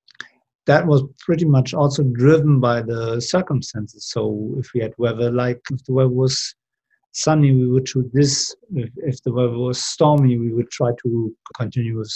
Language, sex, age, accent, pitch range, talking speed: English, male, 50-69, German, 120-135 Hz, 180 wpm